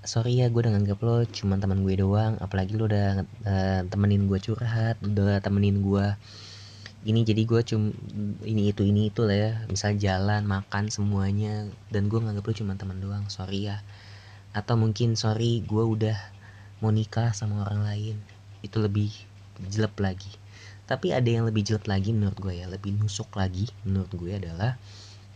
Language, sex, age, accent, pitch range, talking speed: Indonesian, female, 20-39, native, 100-110 Hz, 170 wpm